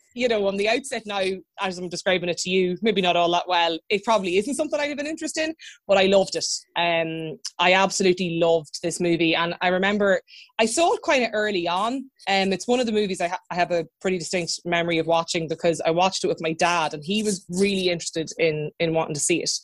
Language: English